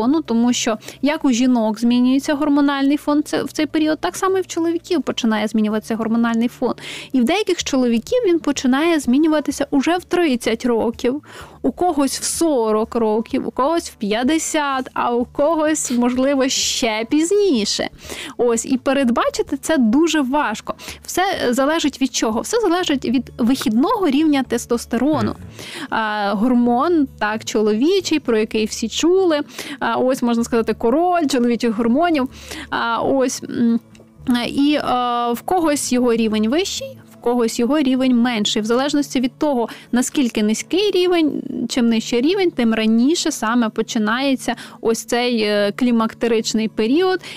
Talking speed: 135 wpm